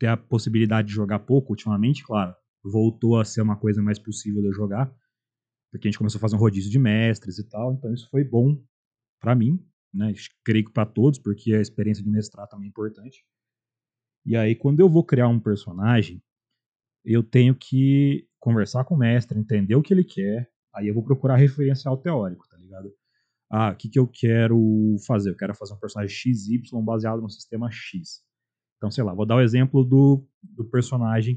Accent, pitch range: Brazilian, 105-130 Hz